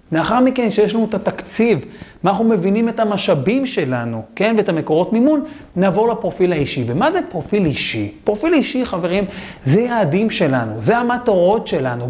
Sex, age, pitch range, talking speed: male, 40-59, 160-220 Hz, 160 wpm